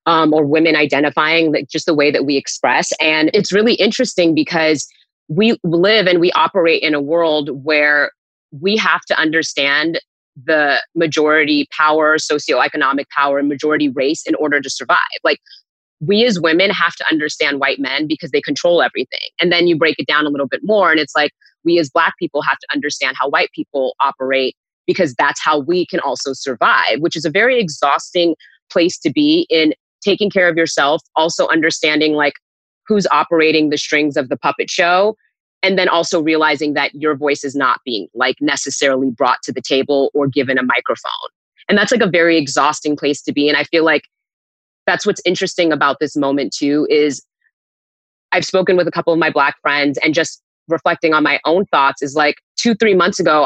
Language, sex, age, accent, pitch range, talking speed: English, female, 20-39, American, 145-175 Hz, 195 wpm